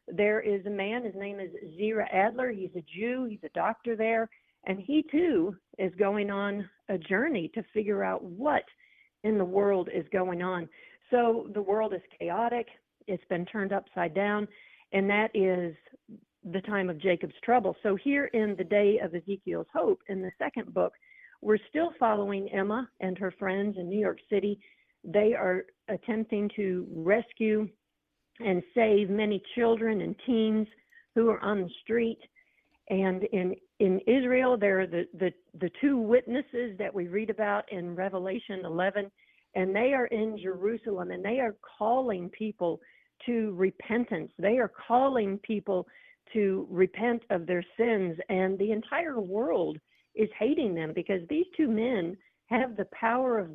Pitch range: 190-230 Hz